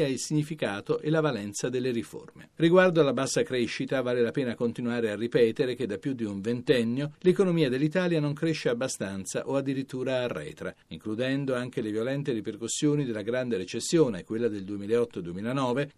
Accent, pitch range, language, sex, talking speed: native, 115-155 Hz, Italian, male, 160 wpm